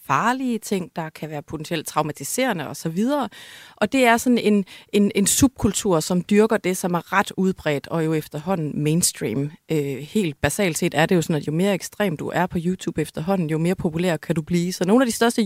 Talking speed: 215 wpm